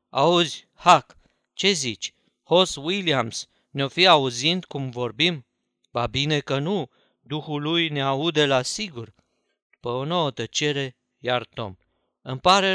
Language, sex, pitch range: Romanian, male, 125-170 Hz